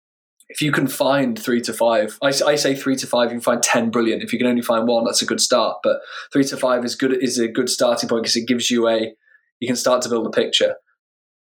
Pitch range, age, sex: 115-130 Hz, 10-29, male